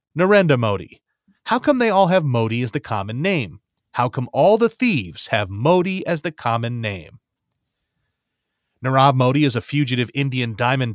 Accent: American